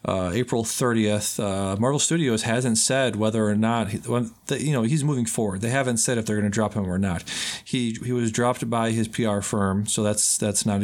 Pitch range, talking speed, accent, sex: 105-130 Hz, 235 wpm, American, male